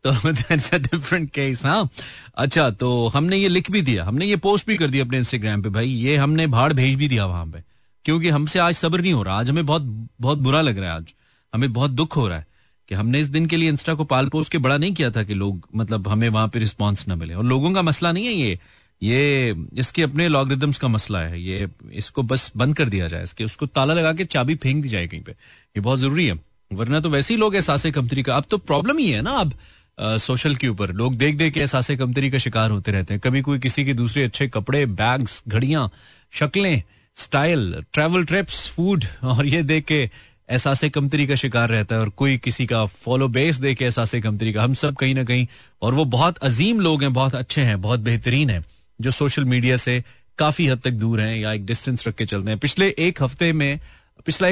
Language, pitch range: Hindi, 110-150 Hz